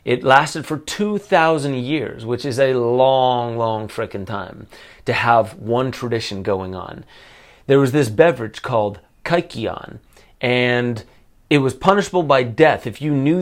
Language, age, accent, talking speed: English, 30-49, American, 150 wpm